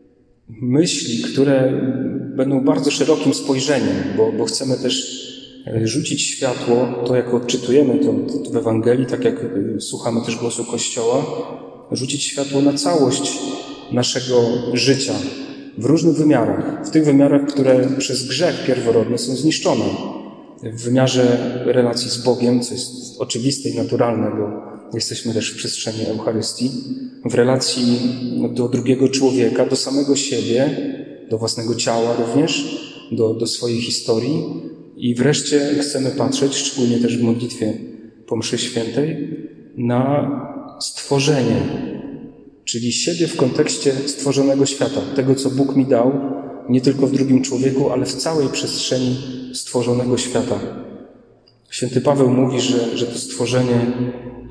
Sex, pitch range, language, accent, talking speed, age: male, 120-140 Hz, Polish, native, 130 wpm, 30-49